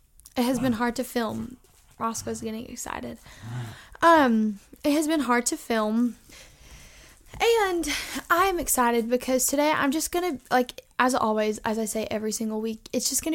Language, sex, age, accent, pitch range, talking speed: English, female, 10-29, American, 225-295 Hz, 165 wpm